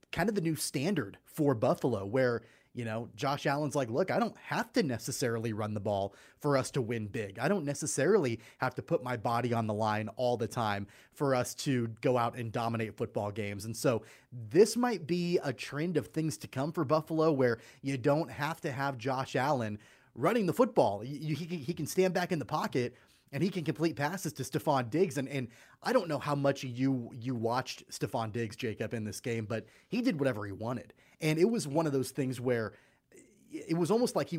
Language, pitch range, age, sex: English, 115-155 Hz, 30-49, male